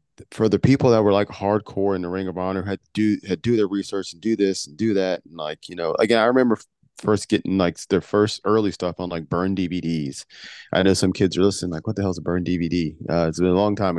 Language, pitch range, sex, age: English, 85-105 Hz, male, 30-49